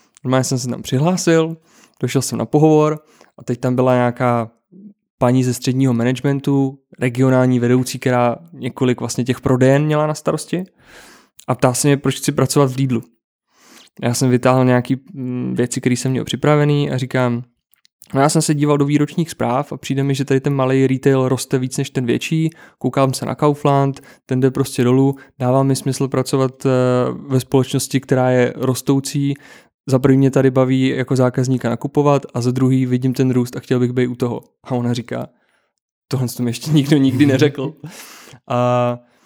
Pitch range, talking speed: 125-135 Hz, 175 wpm